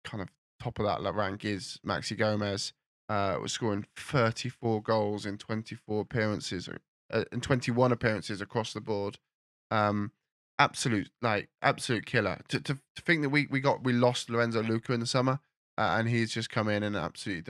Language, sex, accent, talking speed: English, male, British, 180 wpm